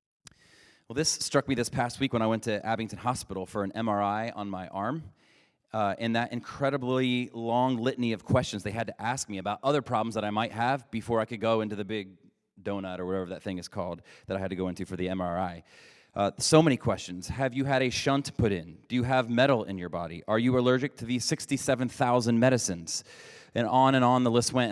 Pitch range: 105-130 Hz